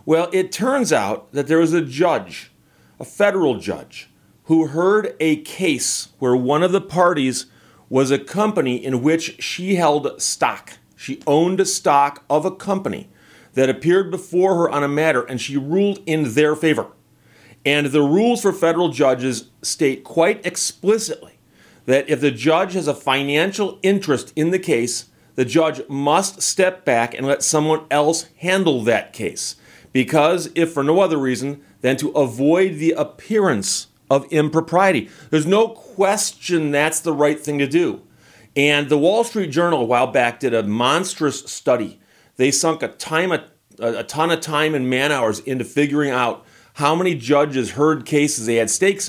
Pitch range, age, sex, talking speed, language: 135-175 Hz, 40-59, male, 170 wpm, English